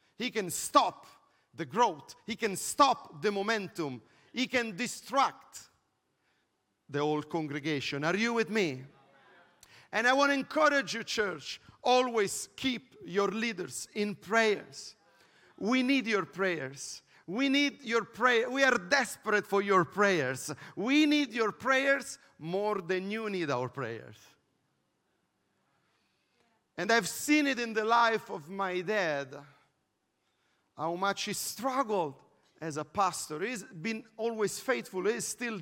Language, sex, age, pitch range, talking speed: English, male, 50-69, 165-235 Hz, 135 wpm